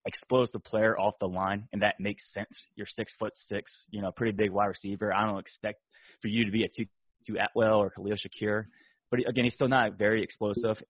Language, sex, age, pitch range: English, male, 20-39, 100-115 Hz